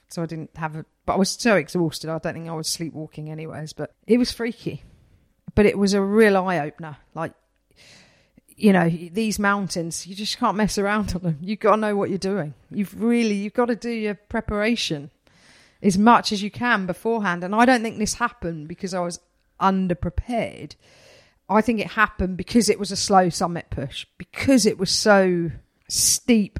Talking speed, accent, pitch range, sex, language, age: 195 wpm, British, 170-215 Hz, female, English, 40-59